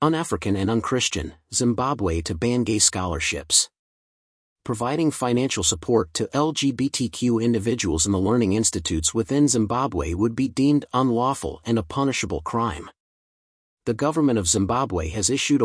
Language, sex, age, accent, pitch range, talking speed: English, male, 40-59, American, 100-130 Hz, 135 wpm